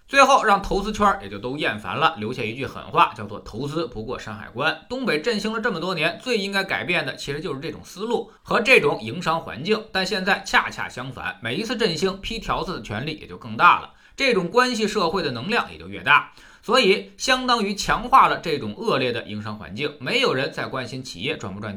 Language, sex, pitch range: Chinese, male, 140-235 Hz